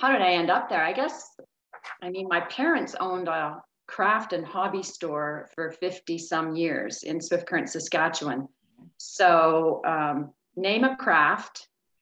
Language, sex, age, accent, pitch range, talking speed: English, female, 40-59, American, 160-185 Hz, 155 wpm